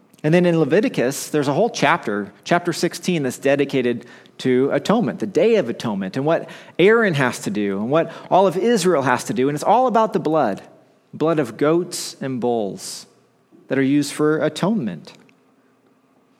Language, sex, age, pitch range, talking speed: English, male, 40-59, 140-180 Hz, 175 wpm